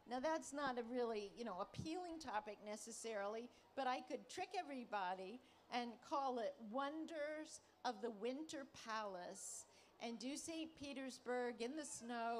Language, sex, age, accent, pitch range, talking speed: English, female, 50-69, American, 225-280 Hz, 145 wpm